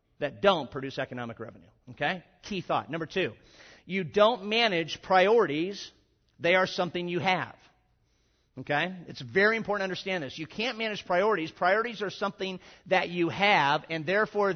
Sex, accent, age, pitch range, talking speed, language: male, American, 50-69, 145-190 Hz, 155 wpm, English